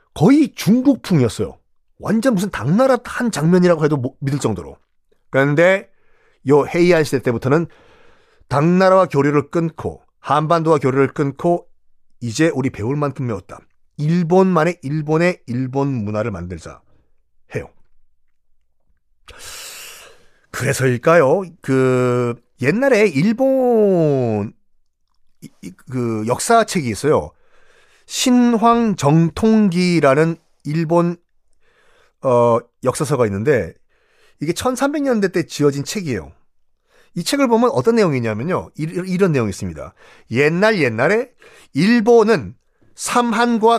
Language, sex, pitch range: Korean, male, 135-215 Hz